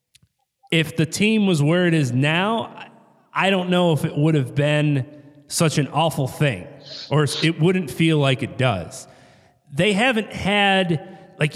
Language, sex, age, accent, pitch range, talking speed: English, male, 30-49, American, 140-175 Hz, 160 wpm